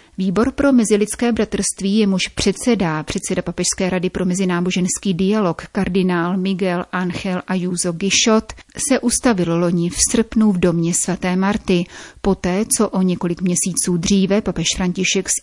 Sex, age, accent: female, 30-49, native